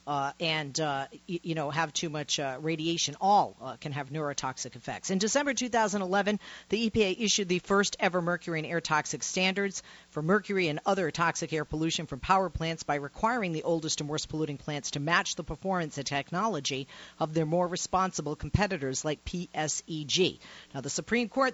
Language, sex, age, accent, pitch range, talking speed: English, female, 50-69, American, 150-195 Hz, 180 wpm